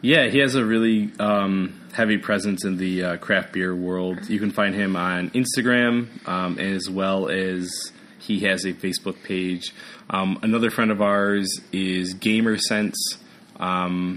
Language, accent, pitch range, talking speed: English, American, 90-105 Hz, 155 wpm